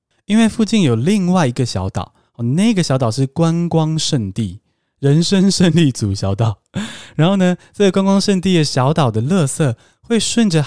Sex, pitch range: male, 115-175 Hz